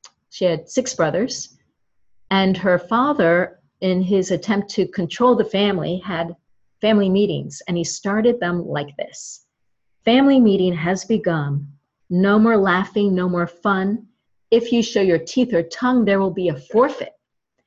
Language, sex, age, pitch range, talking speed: English, female, 40-59, 170-220 Hz, 155 wpm